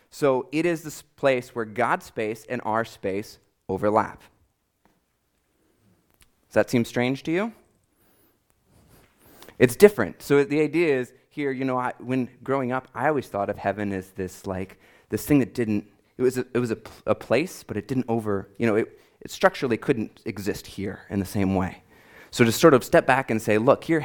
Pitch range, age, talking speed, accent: 105-135 Hz, 30-49, 190 wpm, American